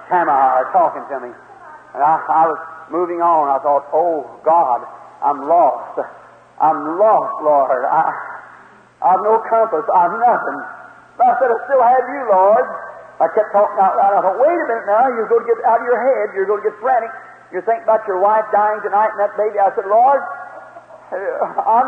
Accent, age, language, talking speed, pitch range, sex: American, 50-69, English, 200 wpm, 170-260 Hz, male